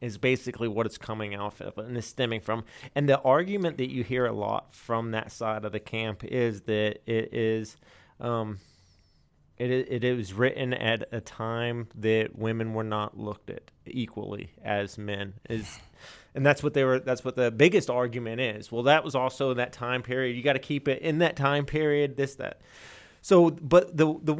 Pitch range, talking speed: 110-140 Hz, 200 wpm